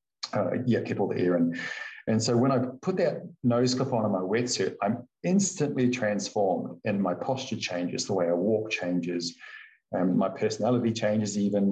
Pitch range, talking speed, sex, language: 95-120 Hz, 195 wpm, male, English